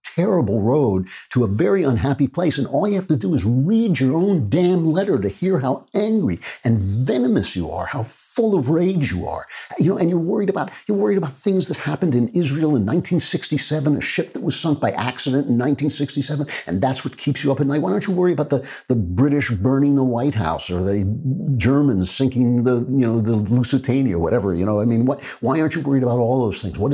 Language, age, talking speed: English, 50-69, 230 wpm